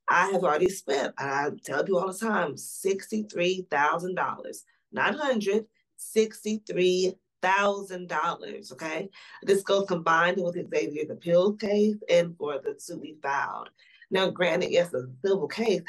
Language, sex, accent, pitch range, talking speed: English, female, American, 180-230 Hz, 160 wpm